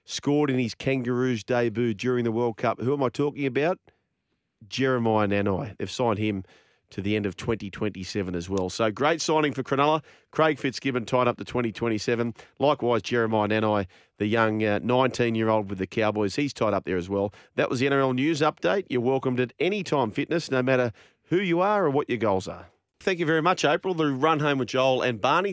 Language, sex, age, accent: English, male, 30-49, Australian